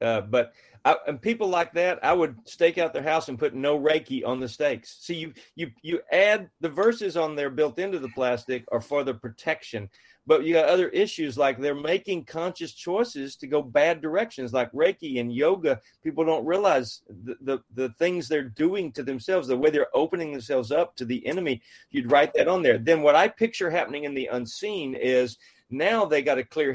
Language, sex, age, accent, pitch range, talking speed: English, male, 40-59, American, 130-180 Hz, 215 wpm